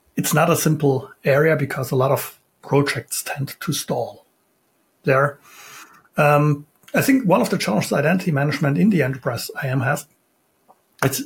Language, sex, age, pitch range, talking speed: English, male, 60-79, 135-155 Hz, 155 wpm